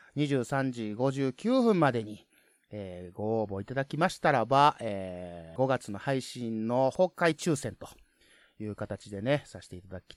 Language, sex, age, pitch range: Japanese, male, 30-49, 105-160 Hz